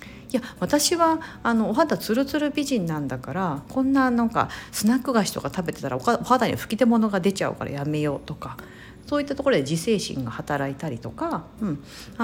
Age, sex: 50-69, female